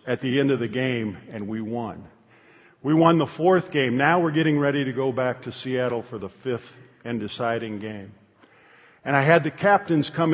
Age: 50-69